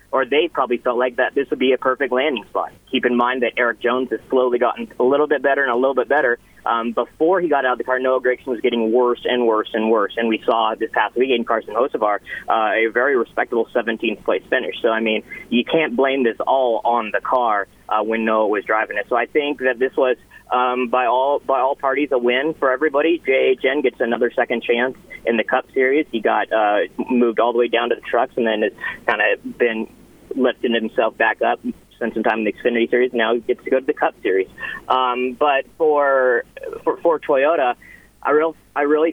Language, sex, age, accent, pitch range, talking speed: English, male, 30-49, American, 120-140 Hz, 235 wpm